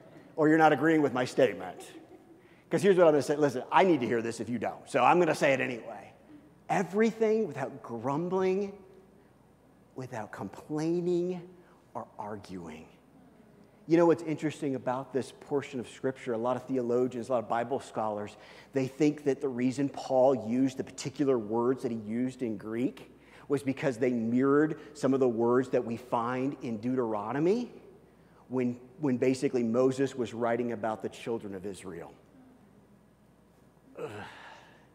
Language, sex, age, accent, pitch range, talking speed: English, male, 40-59, American, 115-150 Hz, 160 wpm